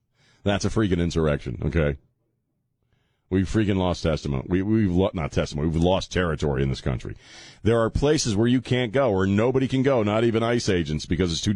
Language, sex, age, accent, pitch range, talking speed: English, male, 40-59, American, 90-125 Hz, 200 wpm